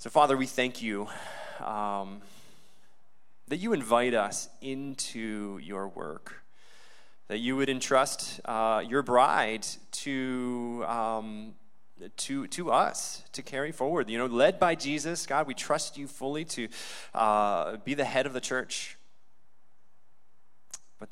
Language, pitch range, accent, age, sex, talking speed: English, 100-125 Hz, American, 20-39, male, 135 wpm